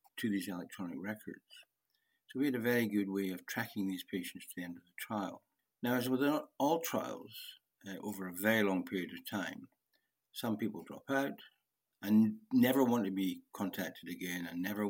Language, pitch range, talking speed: English, 95-135 Hz, 190 wpm